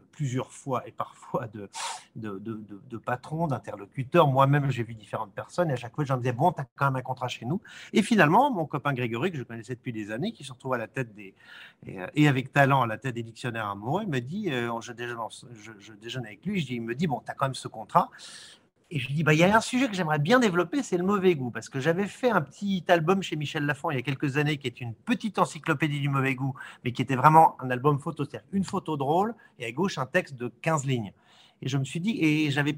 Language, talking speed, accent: French, 265 wpm, French